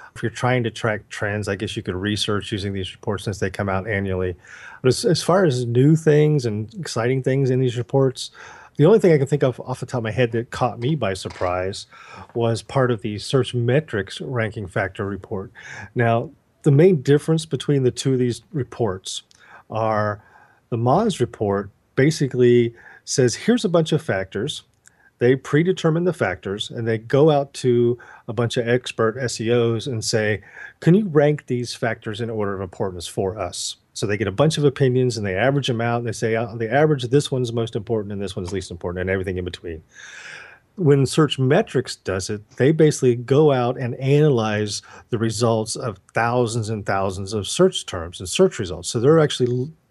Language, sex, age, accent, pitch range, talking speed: English, male, 40-59, American, 110-135 Hz, 200 wpm